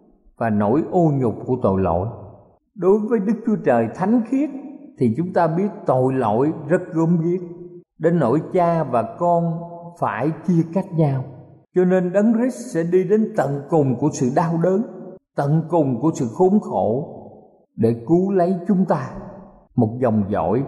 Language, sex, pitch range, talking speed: Vietnamese, male, 120-175 Hz, 170 wpm